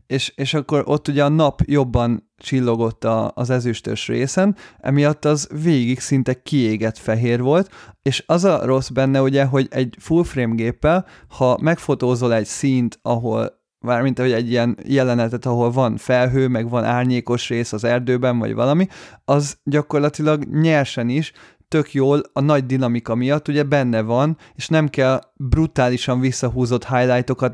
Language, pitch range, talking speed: Hungarian, 125-150 Hz, 155 wpm